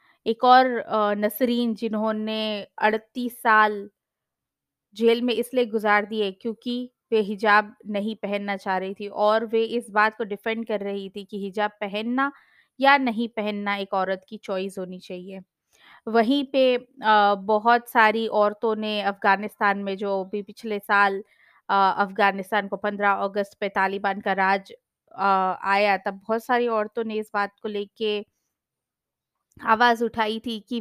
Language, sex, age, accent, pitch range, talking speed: Hindi, female, 20-39, native, 205-235 Hz, 145 wpm